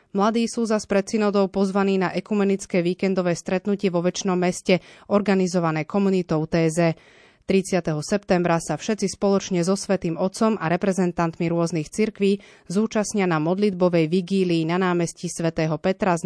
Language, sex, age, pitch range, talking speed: Slovak, female, 30-49, 170-200 Hz, 135 wpm